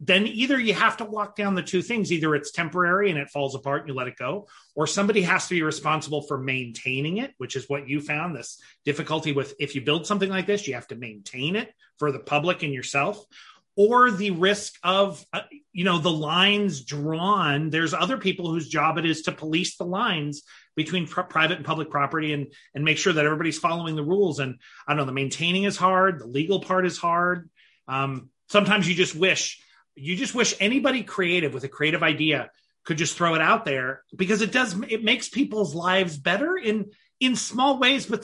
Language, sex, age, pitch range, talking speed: English, male, 30-49, 140-195 Hz, 215 wpm